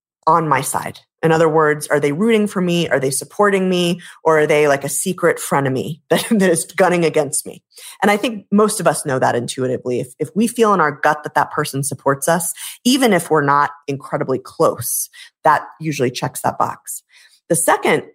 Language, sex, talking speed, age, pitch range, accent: English, female, 205 wpm, 30-49, 145-190 Hz, American